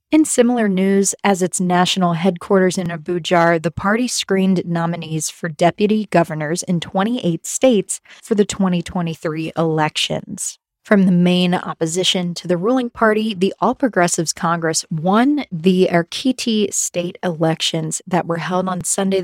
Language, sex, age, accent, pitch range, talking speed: English, female, 20-39, American, 170-210 Hz, 140 wpm